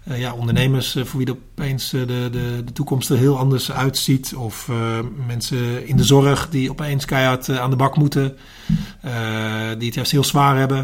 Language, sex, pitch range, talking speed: Dutch, male, 120-140 Hz, 195 wpm